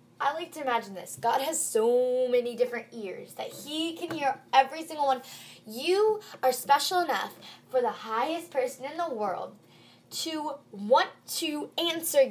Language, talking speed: English, 160 wpm